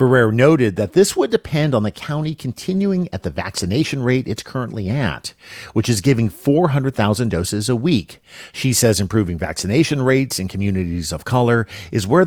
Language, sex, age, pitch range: English, male, 50-69, 100-150 Hz